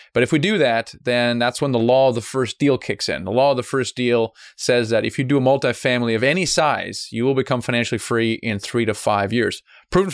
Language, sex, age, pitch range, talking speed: English, male, 30-49, 115-135 Hz, 255 wpm